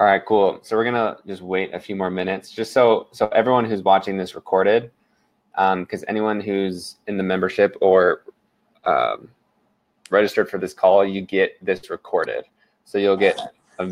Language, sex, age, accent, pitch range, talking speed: English, male, 20-39, American, 95-110 Hz, 180 wpm